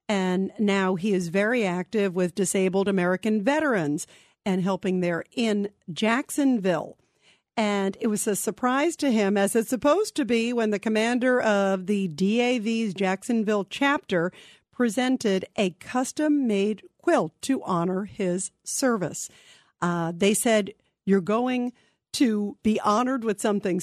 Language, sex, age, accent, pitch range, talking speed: English, female, 50-69, American, 190-235 Hz, 135 wpm